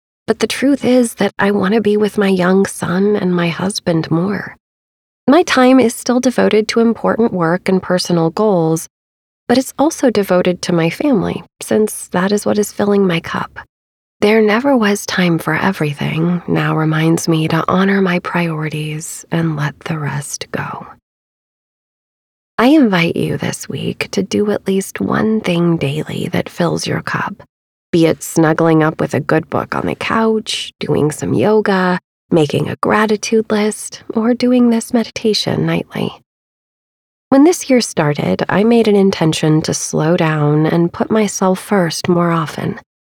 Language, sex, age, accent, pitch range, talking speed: English, female, 30-49, American, 160-215 Hz, 165 wpm